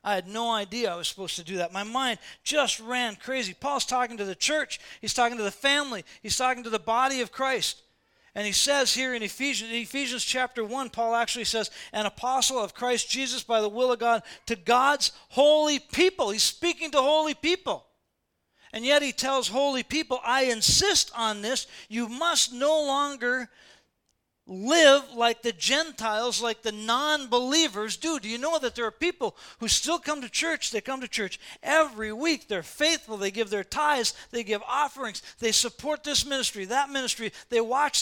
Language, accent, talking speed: English, American, 190 wpm